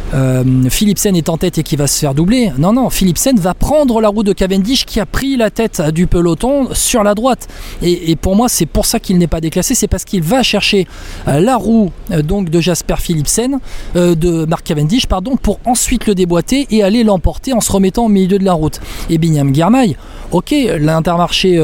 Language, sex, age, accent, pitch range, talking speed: French, male, 20-39, French, 155-205 Hz, 215 wpm